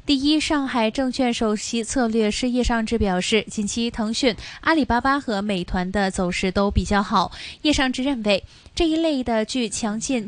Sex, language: female, Chinese